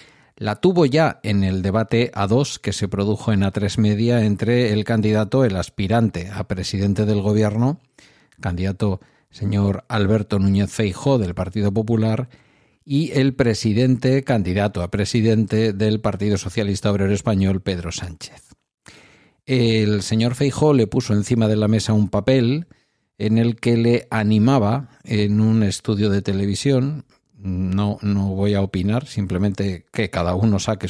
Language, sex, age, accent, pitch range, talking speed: Spanish, male, 50-69, Spanish, 100-120 Hz, 145 wpm